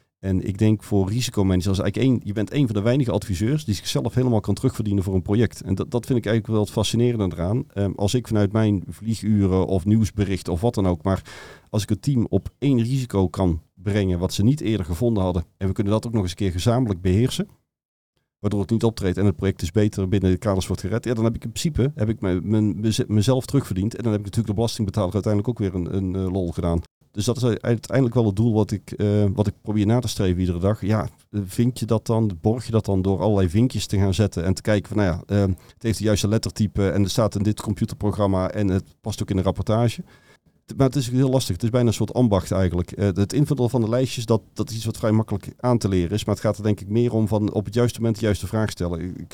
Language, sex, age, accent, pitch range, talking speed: Dutch, male, 40-59, Dutch, 100-115 Hz, 260 wpm